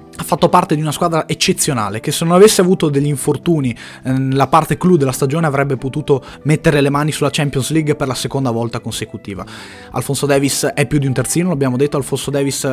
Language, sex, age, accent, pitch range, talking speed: Italian, male, 20-39, native, 120-150 Hz, 205 wpm